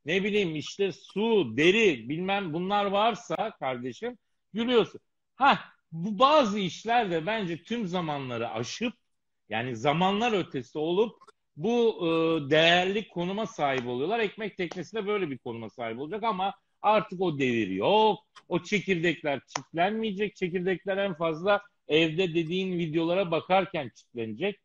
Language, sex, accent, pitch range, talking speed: Turkish, male, native, 155-205 Hz, 120 wpm